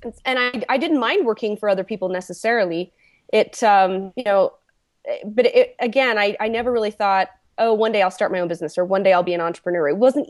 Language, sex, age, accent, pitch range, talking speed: English, female, 20-39, American, 180-245 Hz, 215 wpm